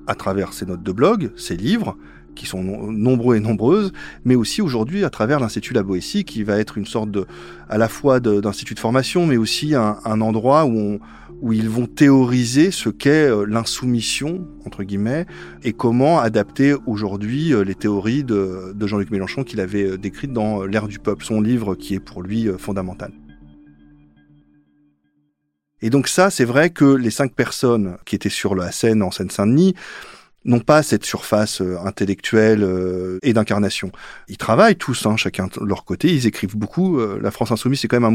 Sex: male